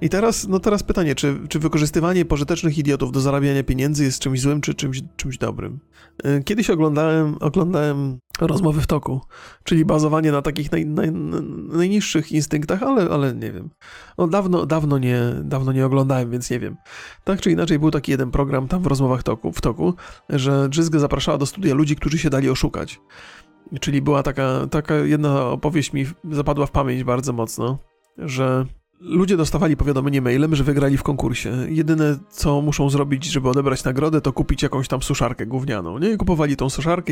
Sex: male